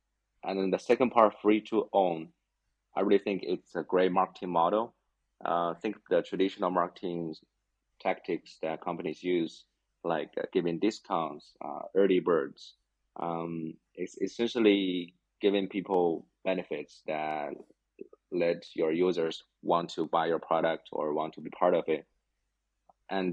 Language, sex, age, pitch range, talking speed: Vietnamese, male, 30-49, 85-100 Hz, 140 wpm